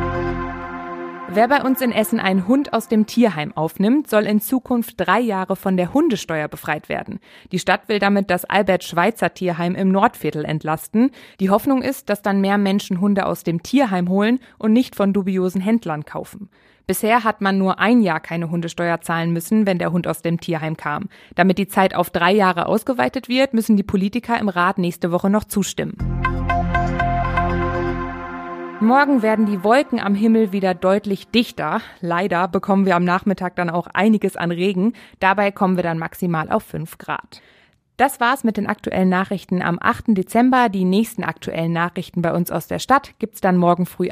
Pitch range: 175-220 Hz